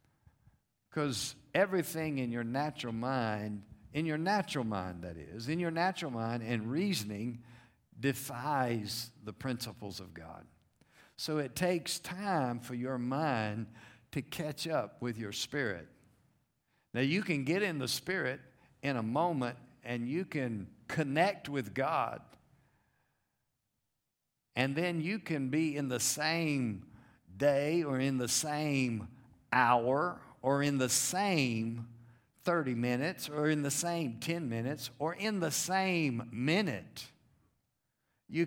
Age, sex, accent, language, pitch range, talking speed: 50-69, male, American, English, 120-155 Hz, 130 wpm